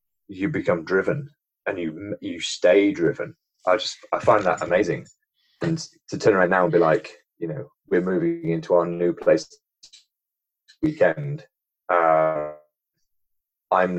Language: English